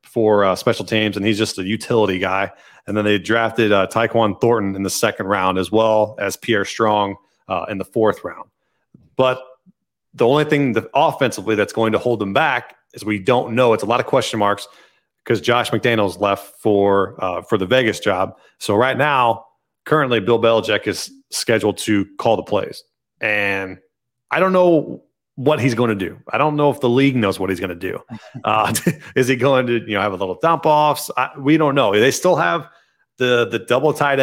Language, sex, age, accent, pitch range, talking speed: English, male, 30-49, American, 105-130 Hz, 210 wpm